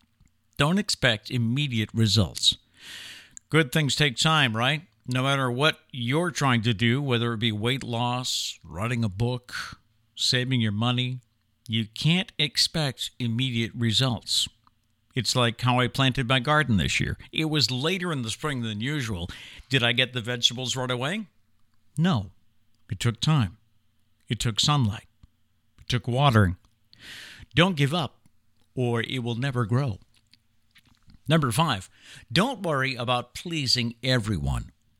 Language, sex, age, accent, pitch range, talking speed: English, male, 50-69, American, 110-140 Hz, 140 wpm